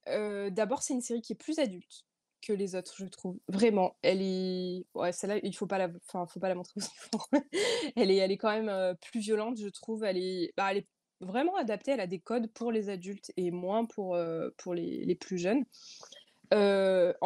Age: 20-39